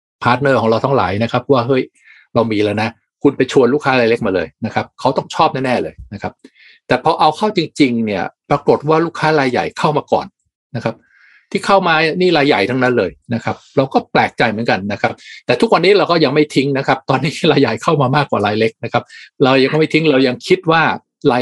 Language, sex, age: Thai, male, 60-79